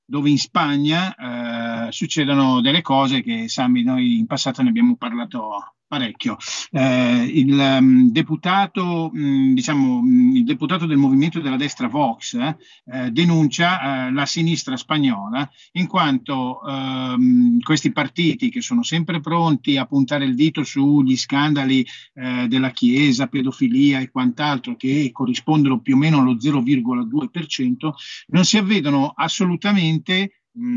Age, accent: 50-69, native